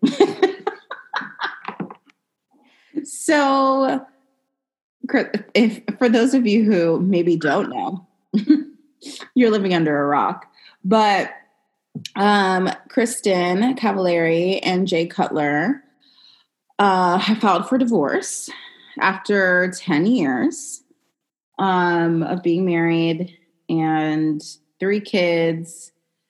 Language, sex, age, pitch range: English, female, 30-49, 170-255 Hz